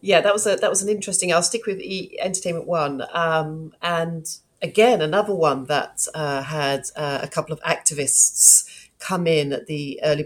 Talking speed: 185 wpm